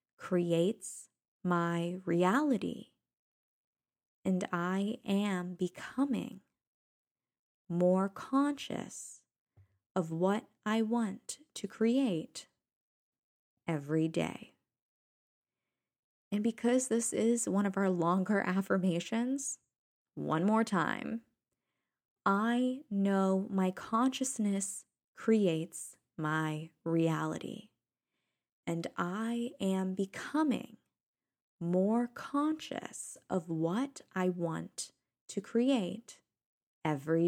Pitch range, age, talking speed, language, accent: 170-220 Hz, 20-39, 80 wpm, English, American